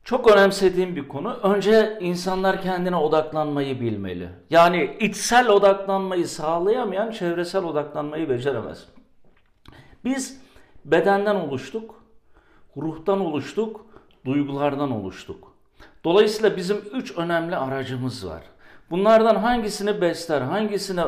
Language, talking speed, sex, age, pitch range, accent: Turkish, 95 wpm, male, 50-69, 150-205 Hz, native